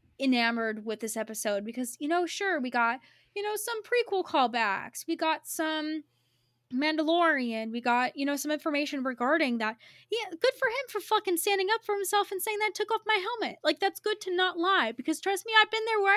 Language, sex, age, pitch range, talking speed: English, female, 20-39, 245-365 Hz, 210 wpm